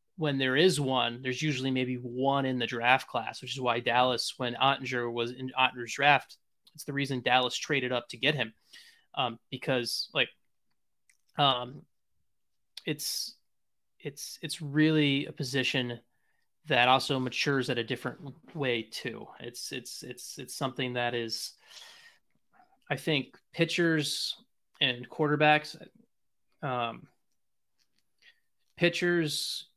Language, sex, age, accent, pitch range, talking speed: English, male, 20-39, American, 125-150 Hz, 125 wpm